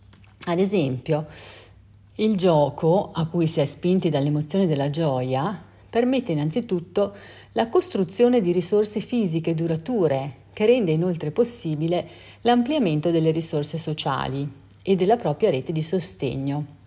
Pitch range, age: 150-195 Hz, 40-59